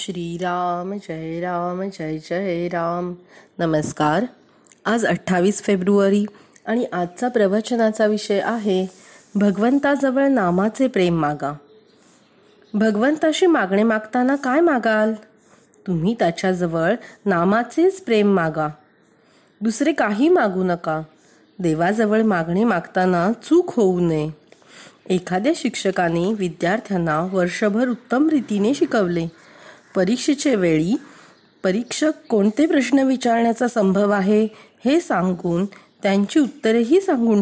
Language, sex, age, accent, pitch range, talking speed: Marathi, female, 30-49, native, 180-245 Hz, 95 wpm